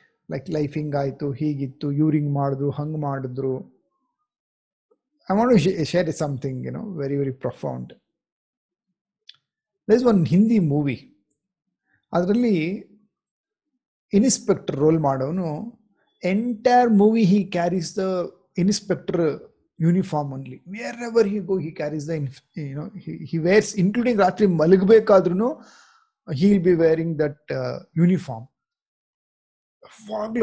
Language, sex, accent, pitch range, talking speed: Kannada, male, native, 150-205 Hz, 120 wpm